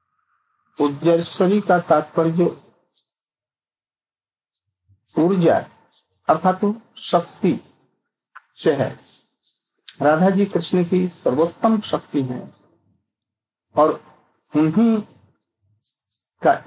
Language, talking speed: Hindi, 65 wpm